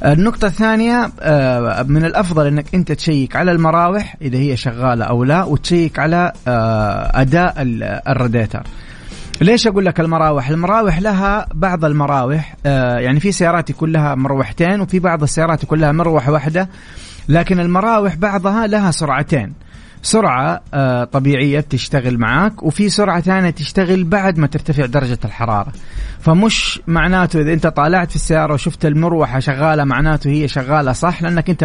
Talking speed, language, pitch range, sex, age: 135 wpm, Arabic, 130-175 Hz, male, 30-49